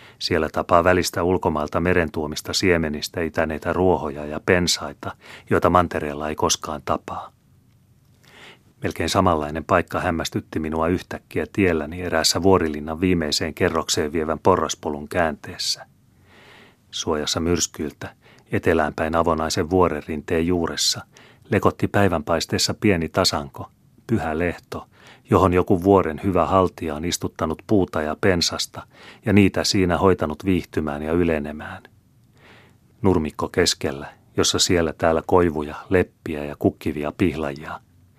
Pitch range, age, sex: 80-95 Hz, 30-49, male